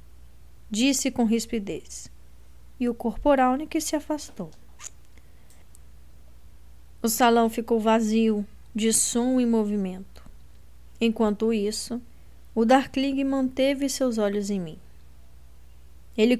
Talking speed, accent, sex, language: 100 wpm, Brazilian, female, Portuguese